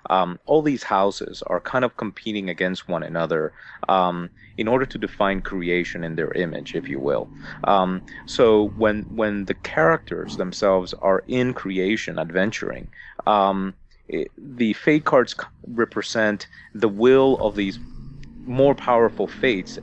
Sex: male